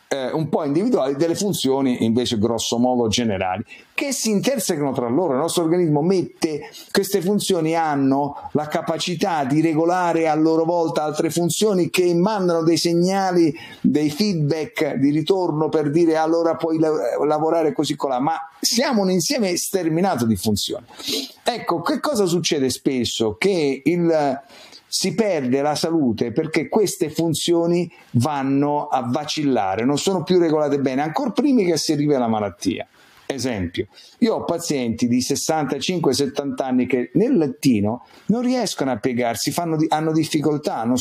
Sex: male